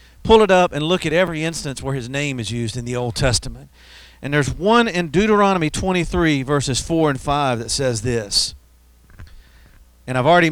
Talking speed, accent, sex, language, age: 190 wpm, American, male, English, 50-69